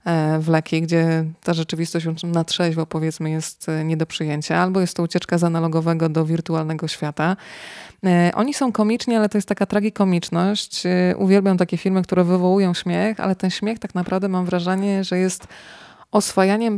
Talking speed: 160 wpm